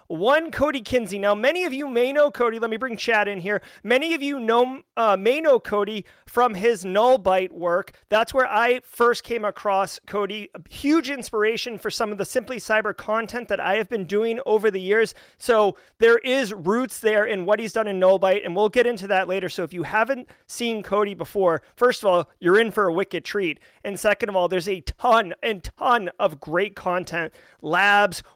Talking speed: 210 wpm